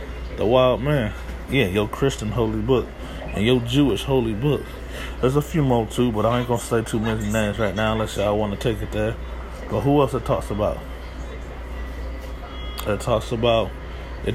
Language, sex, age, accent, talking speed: English, male, 20-39, American, 190 wpm